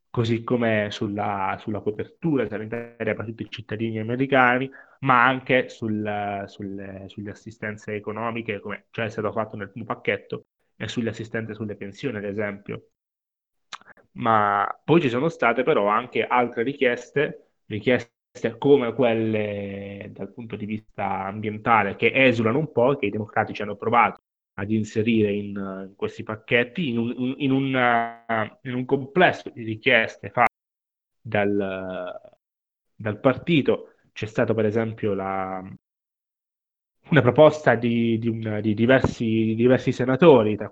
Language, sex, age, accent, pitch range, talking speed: Italian, male, 20-39, native, 105-125 Hz, 135 wpm